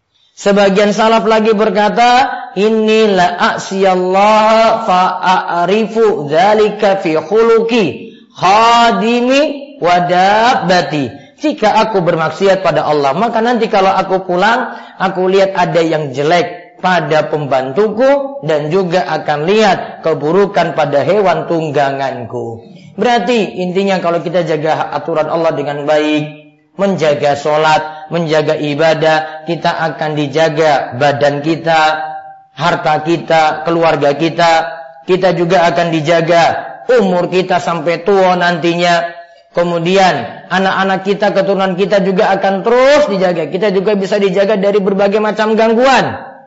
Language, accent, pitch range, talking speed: Indonesian, native, 160-215 Hz, 110 wpm